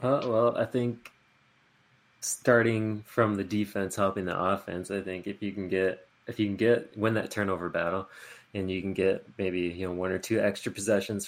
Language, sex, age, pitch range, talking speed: English, male, 20-39, 95-115 Hz, 195 wpm